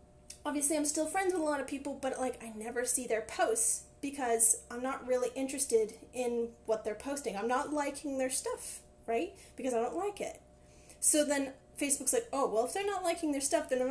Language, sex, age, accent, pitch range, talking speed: English, female, 10-29, American, 235-325 Hz, 215 wpm